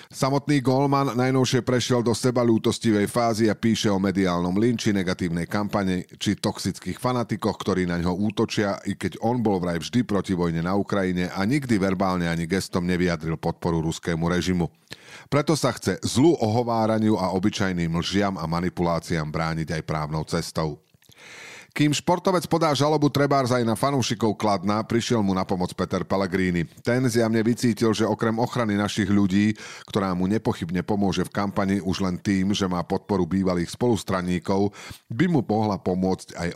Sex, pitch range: male, 90-120 Hz